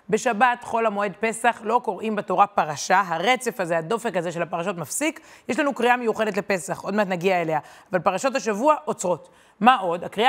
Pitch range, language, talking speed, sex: 185-245 Hz, Hebrew, 180 wpm, female